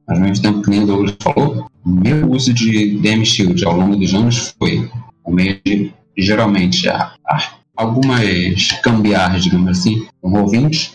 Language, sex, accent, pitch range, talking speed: Portuguese, male, Brazilian, 105-135 Hz, 170 wpm